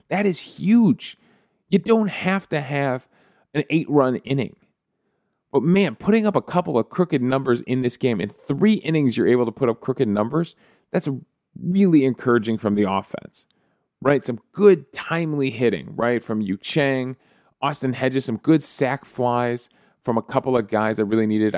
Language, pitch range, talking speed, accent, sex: English, 110-145 Hz, 170 wpm, American, male